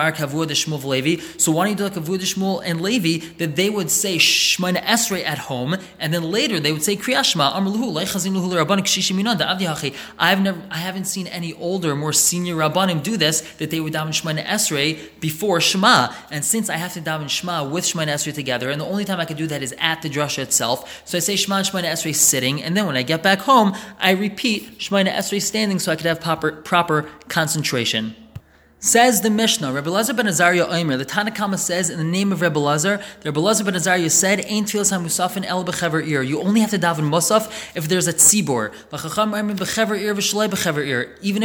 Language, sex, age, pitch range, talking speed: English, male, 20-39, 155-200 Hz, 205 wpm